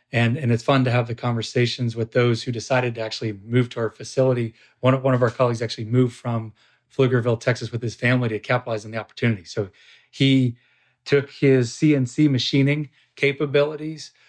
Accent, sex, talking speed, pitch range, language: American, male, 185 wpm, 115-130 Hz, English